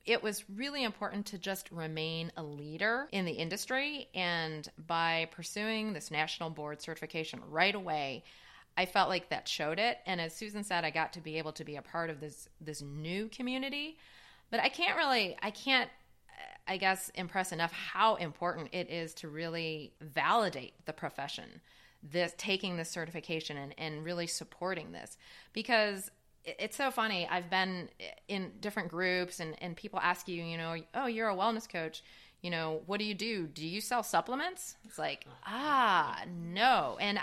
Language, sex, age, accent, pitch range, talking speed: English, female, 30-49, American, 160-210 Hz, 175 wpm